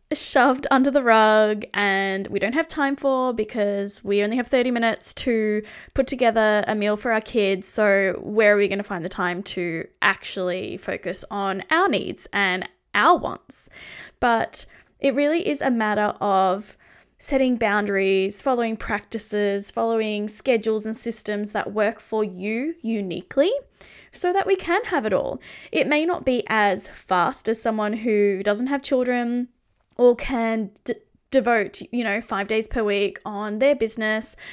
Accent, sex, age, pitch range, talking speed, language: Australian, female, 20-39, 205-260 Hz, 165 wpm, English